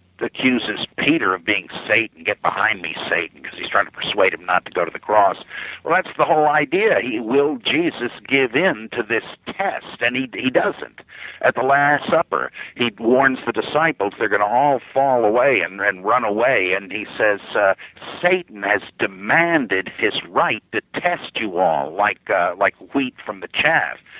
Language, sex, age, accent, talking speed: English, male, 60-79, American, 185 wpm